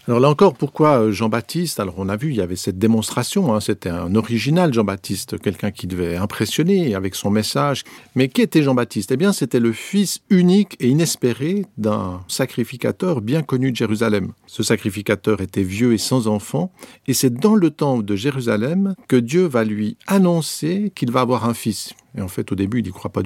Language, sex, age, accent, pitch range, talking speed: French, male, 50-69, French, 110-160 Hz, 200 wpm